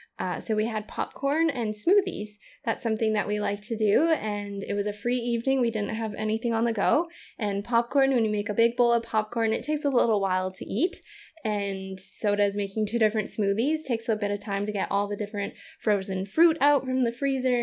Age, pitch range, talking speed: 10-29, 205-255 Hz, 230 wpm